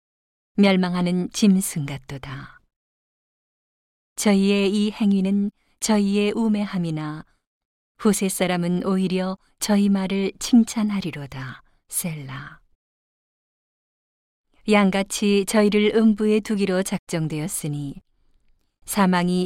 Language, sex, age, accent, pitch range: Korean, female, 40-59, native, 155-200 Hz